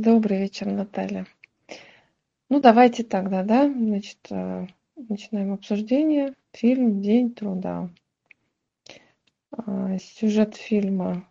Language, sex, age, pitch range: Russian, female, 20-39, 195-225 Hz